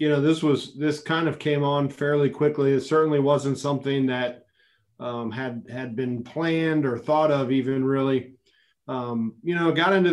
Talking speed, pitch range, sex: 185 wpm, 130-150 Hz, male